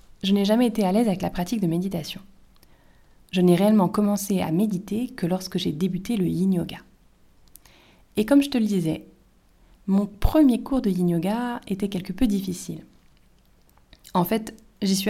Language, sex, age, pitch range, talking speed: French, female, 30-49, 170-215 Hz, 165 wpm